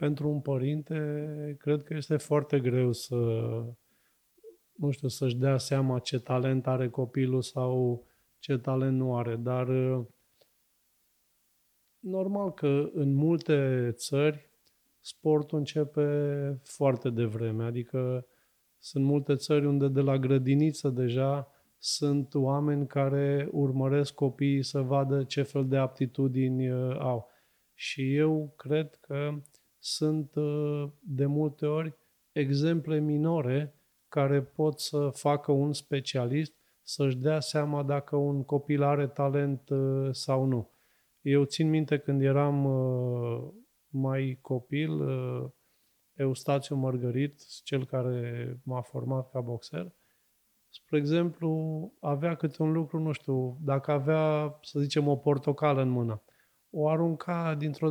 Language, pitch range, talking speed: Romanian, 130-150 Hz, 120 wpm